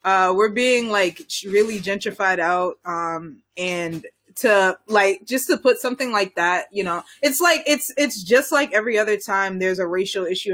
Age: 20-39